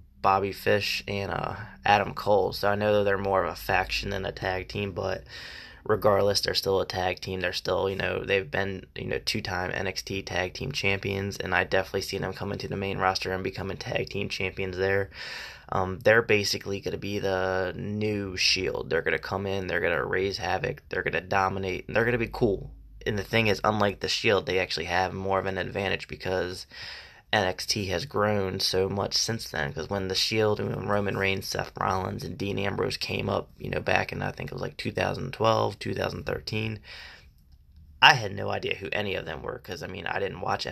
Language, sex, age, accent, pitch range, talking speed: English, male, 20-39, American, 95-105 Hz, 215 wpm